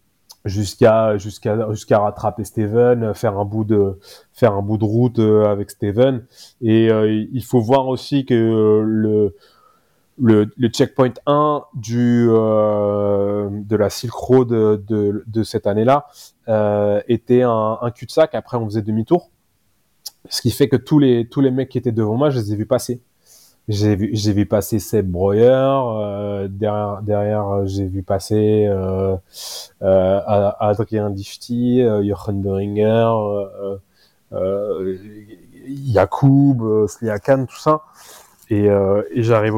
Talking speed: 145 wpm